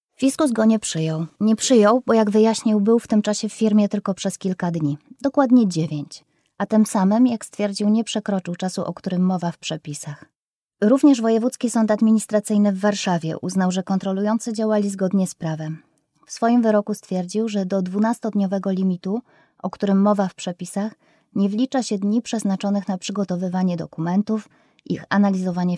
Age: 20-39